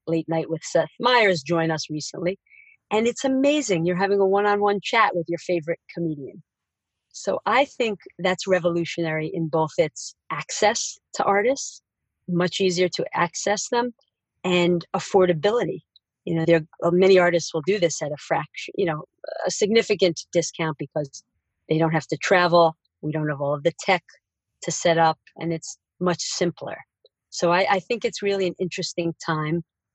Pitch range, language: 155-190 Hz, English